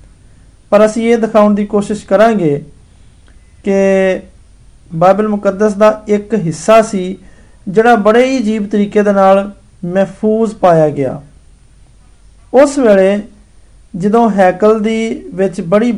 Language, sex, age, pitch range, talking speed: Hindi, male, 50-69, 180-220 Hz, 90 wpm